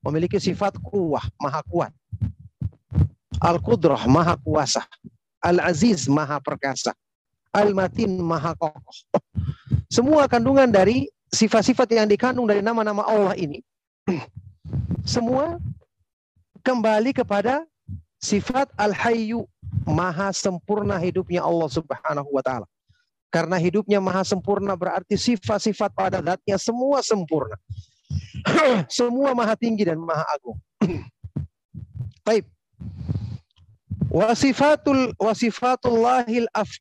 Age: 40-59